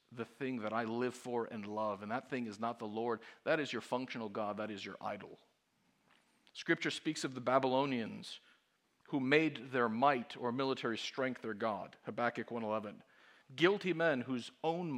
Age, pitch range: 50-69, 120-155 Hz